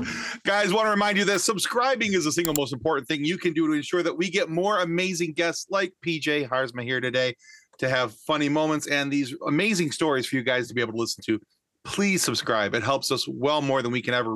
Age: 40-59